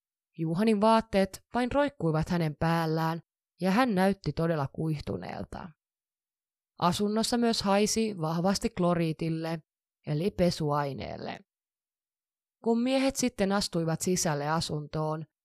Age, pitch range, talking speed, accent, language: 20-39, 160-210 Hz, 95 wpm, native, Finnish